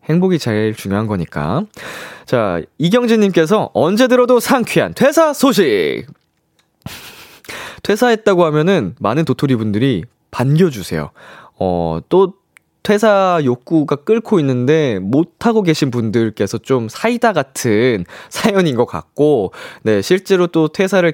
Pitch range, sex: 120-195 Hz, male